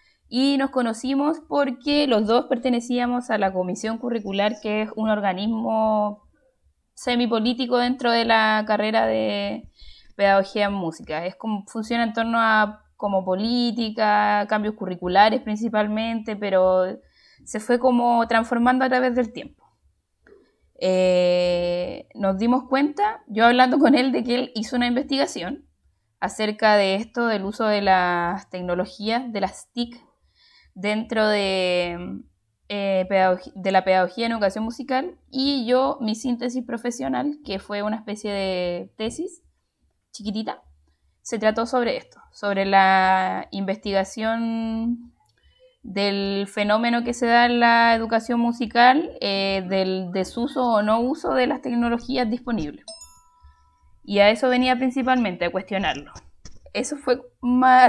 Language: Spanish